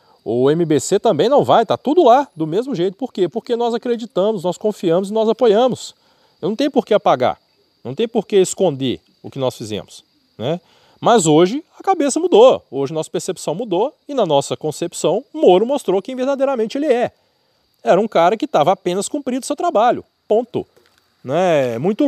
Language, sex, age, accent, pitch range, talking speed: Portuguese, male, 40-59, Brazilian, 135-220 Hz, 190 wpm